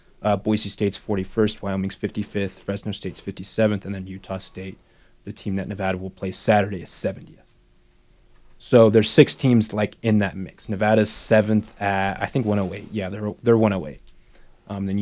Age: 20-39